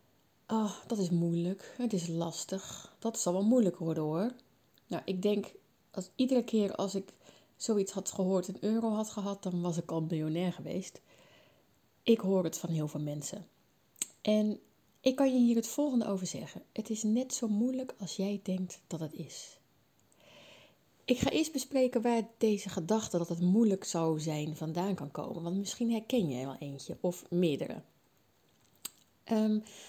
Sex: female